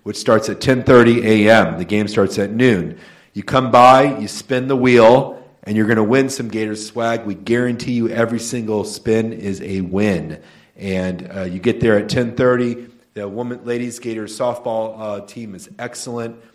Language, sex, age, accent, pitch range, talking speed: English, male, 40-59, American, 105-125 Hz, 180 wpm